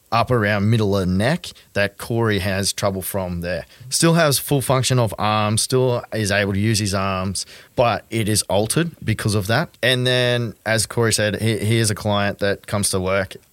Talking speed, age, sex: 200 wpm, 30-49, male